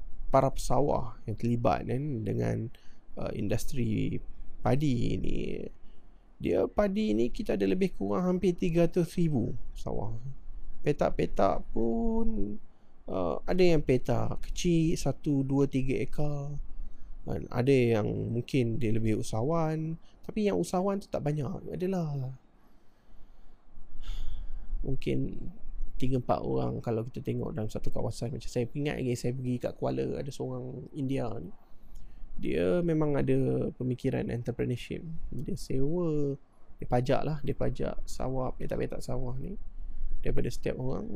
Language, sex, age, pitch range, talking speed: Malay, male, 20-39, 115-150 Hz, 130 wpm